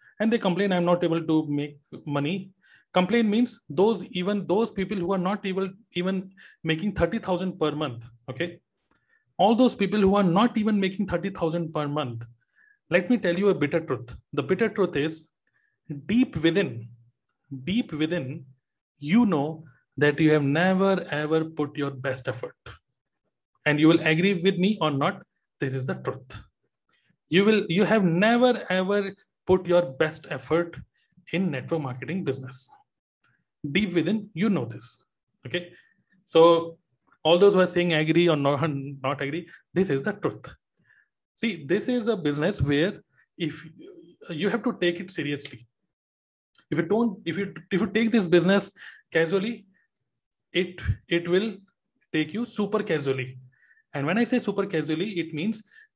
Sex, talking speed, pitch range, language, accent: male, 165 wpm, 150-200 Hz, Hindi, native